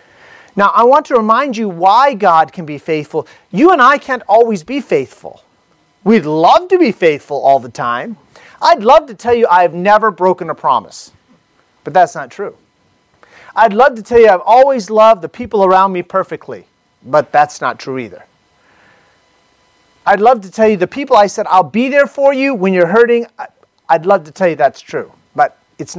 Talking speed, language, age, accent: 195 wpm, English, 40-59, American